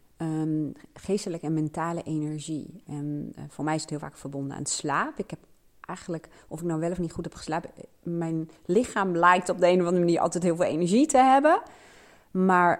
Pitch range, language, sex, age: 150-175 Hz, Dutch, female, 30-49